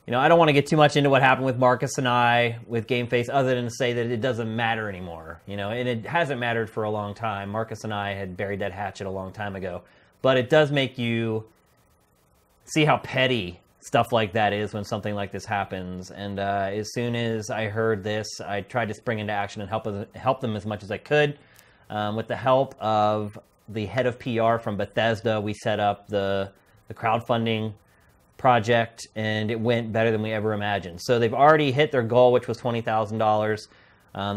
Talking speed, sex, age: 220 wpm, male, 30-49